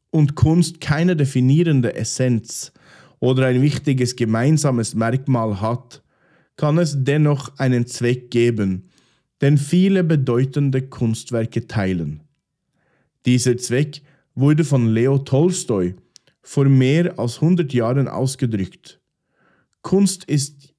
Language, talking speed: German, 105 wpm